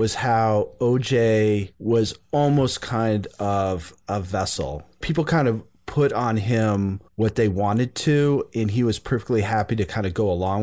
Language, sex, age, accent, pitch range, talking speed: English, male, 30-49, American, 95-115 Hz, 165 wpm